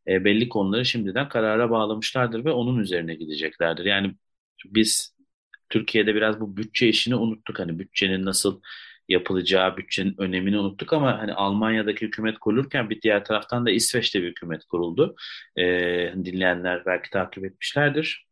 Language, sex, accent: Turkish, male, native